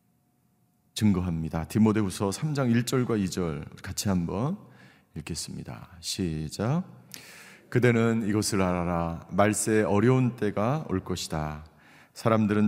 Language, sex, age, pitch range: Korean, male, 40-59, 105-165 Hz